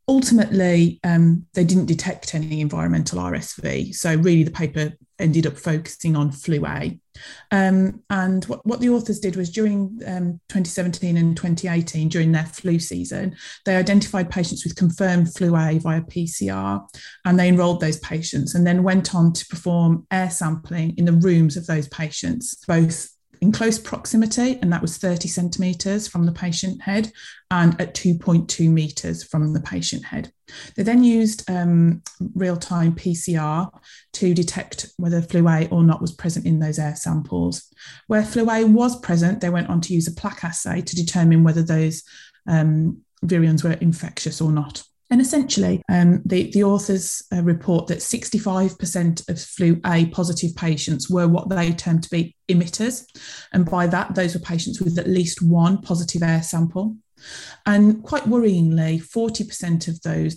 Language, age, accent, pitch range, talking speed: English, 30-49, British, 165-190 Hz, 165 wpm